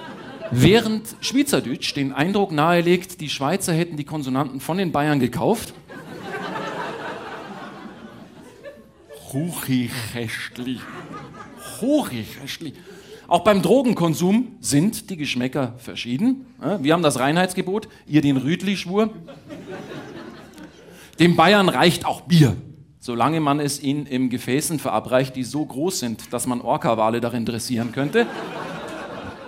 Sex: male